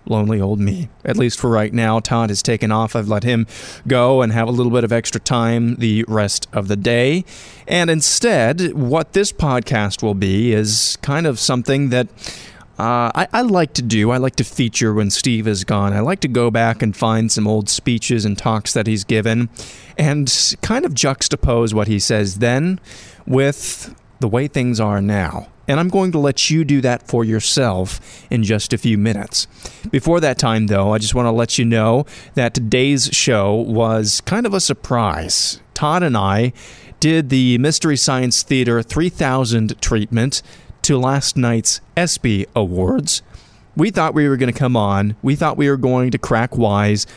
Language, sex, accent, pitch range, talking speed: English, male, American, 110-135 Hz, 190 wpm